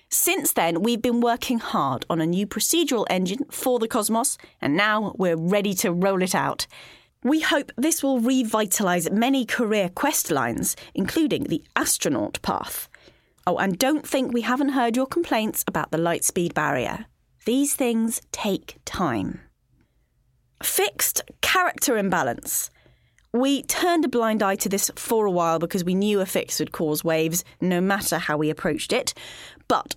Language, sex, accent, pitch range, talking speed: English, female, British, 185-270 Hz, 160 wpm